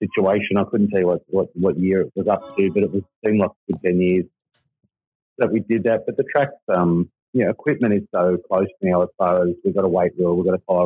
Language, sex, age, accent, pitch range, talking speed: English, male, 40-59, Australian, 90-105 Hz, 270 wpm